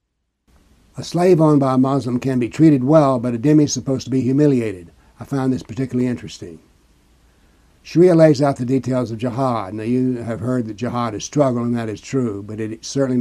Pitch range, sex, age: 100-135 Hz, male, 60-79